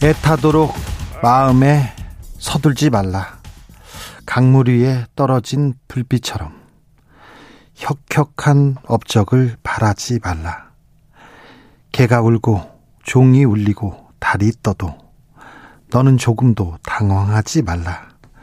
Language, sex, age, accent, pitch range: Korean, male, 40-59, native, 105-130 Hz